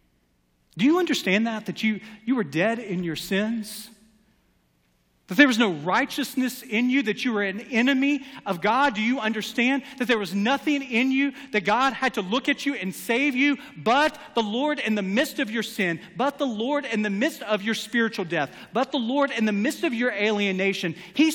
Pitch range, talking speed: 180-270 Hz, 210 wpm